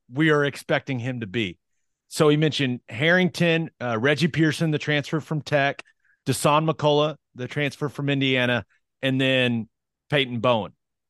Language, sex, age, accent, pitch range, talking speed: English, male, 30-49, American, 135-175 Hz, 145 wpm